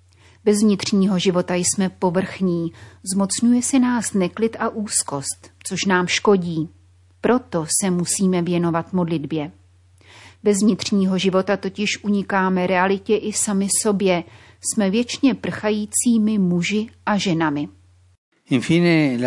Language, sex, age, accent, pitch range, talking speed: Czech, female, 30-49, native, 170-210 Hz, 105 wpm